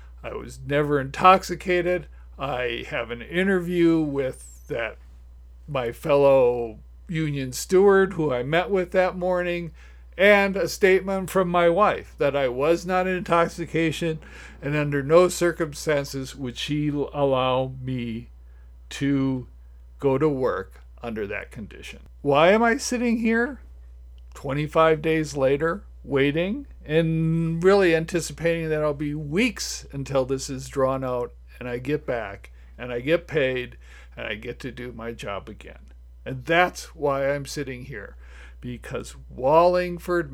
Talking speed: 135 wpm